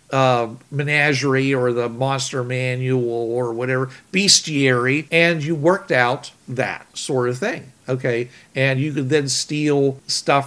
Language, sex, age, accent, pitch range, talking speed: English, male, 50-69, American, 125-160 Hz, 130 wpm